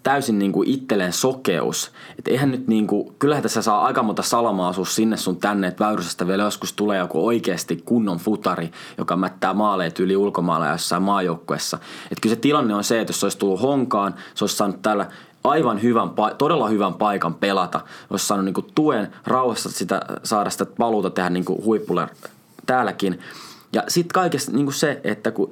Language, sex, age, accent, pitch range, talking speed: Finnish, male, 20-39, native, 100-135 Hz, 185 wpm